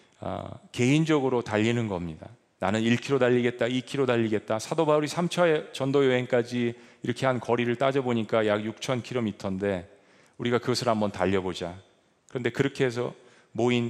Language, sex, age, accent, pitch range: Korean, male, 40-59, native, 105-135 Hz